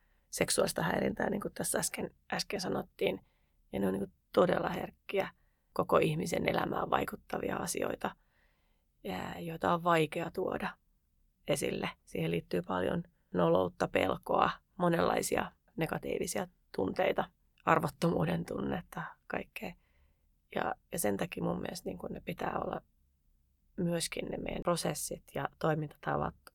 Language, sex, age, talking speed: Finnish, female, 30-49, 120 wpm